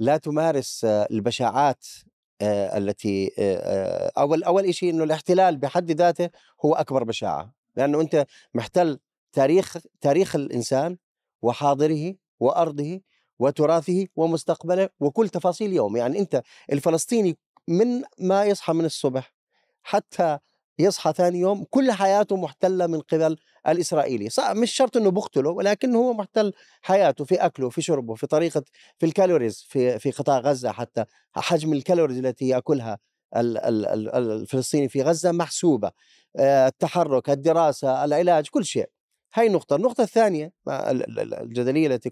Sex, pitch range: male, 130-180 Hz